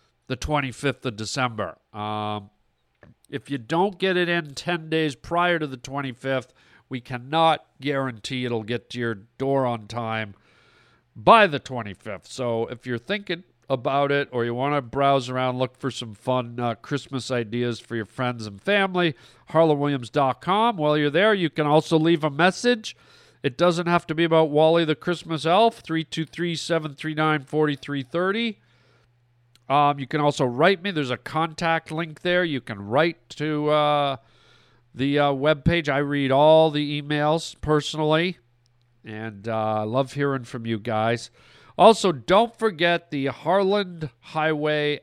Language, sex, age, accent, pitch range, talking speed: English, male, 50-69, American, 125-165 Hz, 150 wpm